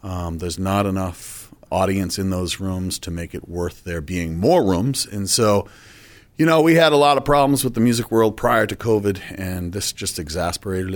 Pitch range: 95-115 Hz